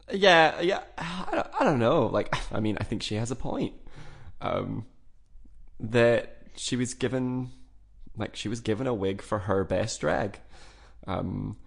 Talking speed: 165 wpm